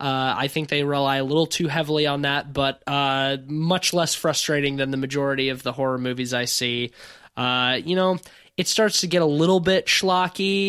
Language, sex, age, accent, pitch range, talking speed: English, male, 20-39, American, 135-165 Hz, 200 wpm